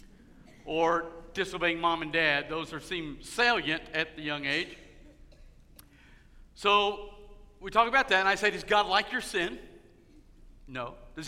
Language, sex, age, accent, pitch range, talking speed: English, male, 50-69, American, 140-205 Hz, 150 wpm